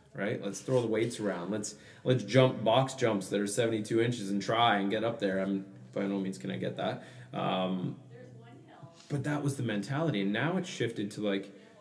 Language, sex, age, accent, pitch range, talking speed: English, male, 20-39, American, 100-130 Hz, 210 wpm